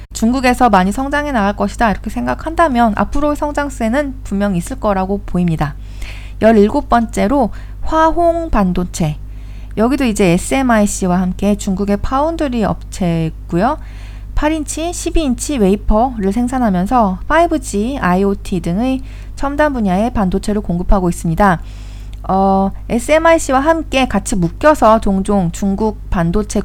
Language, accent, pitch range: Korean, native, 185-255 Hz